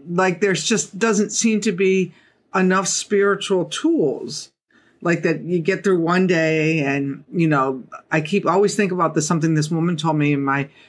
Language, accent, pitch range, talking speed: English, American, 160-200 Hz, 180 wpm